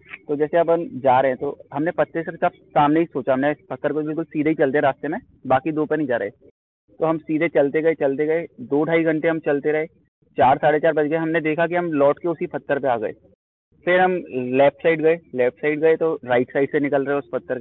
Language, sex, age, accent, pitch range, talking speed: Hindi, male, 30-49, native, 135-160 Hz, 250 wpm